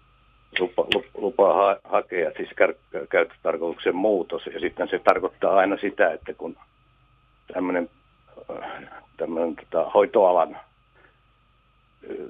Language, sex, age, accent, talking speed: Finnish, male, 60-79, native, 120 wpm